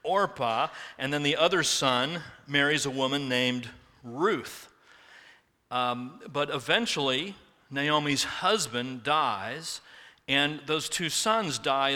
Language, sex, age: English, male, 40-59